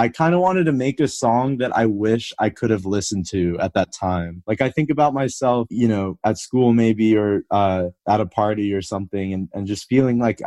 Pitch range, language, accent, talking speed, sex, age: 100-125 Hz, English, American, 235 wpm, male, 20-39